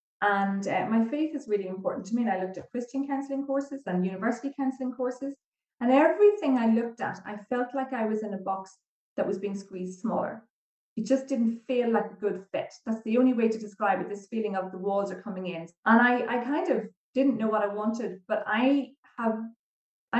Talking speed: 220 wpm